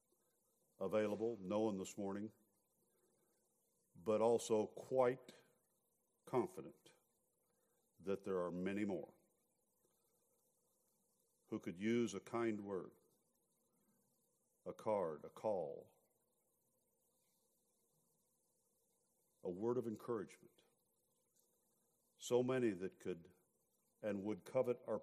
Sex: male